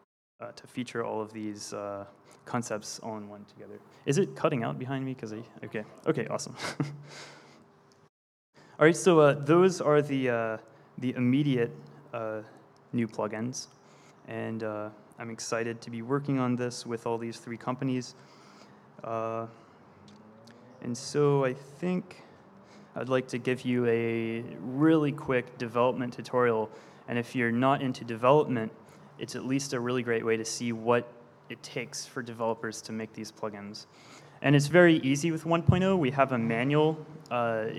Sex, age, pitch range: male, 20-39, 115-140 Hz